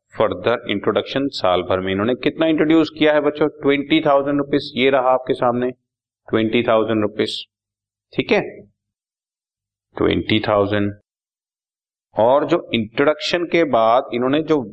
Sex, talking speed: male, 130 wpm